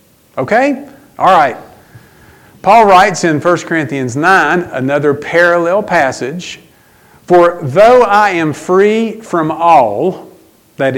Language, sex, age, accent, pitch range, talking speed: English, male, 50-69, American, 140-200 Hz, 110 wpm